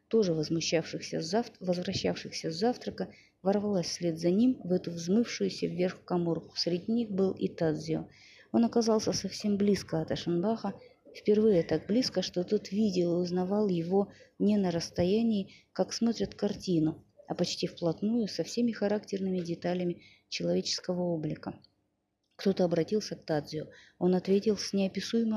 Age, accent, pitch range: 30-49, native, 170-210 Hz